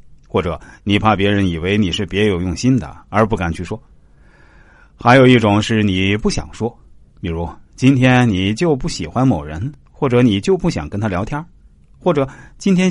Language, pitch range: Chinese, 90-125 Hz